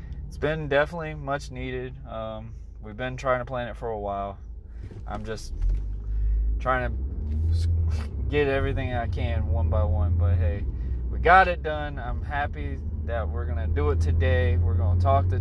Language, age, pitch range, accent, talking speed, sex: English, 20-39, 70-95 Hz, American, 180 wpm, male